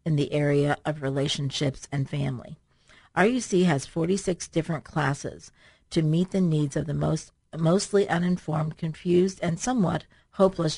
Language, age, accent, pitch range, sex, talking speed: English, 50-69, American, 145-175 Hz, female, 140 wpm